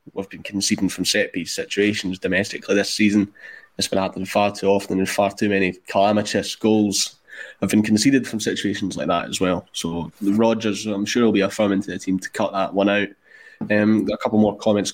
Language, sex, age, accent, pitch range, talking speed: English, male, 20-39, British, 95-115 Hz, 215 wpm